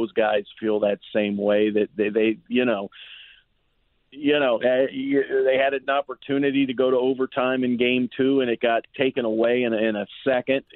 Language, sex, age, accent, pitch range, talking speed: English, male, 50-69, American, 115-135 Hz, 190 wpm